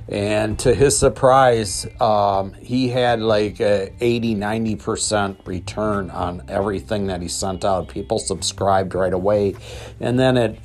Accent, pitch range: American, 90-110 Hz